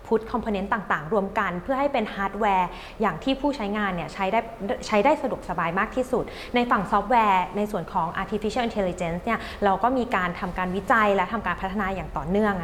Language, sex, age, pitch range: Thai, female, 20-39, 195-245 Hz